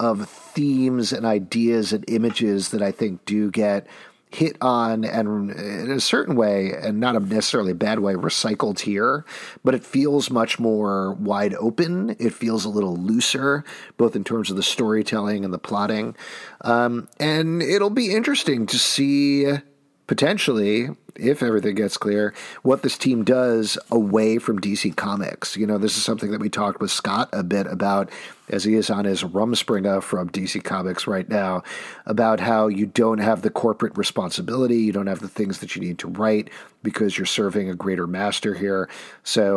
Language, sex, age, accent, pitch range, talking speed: English, male, 40-59, American, 100-125 Hz, 175 wpm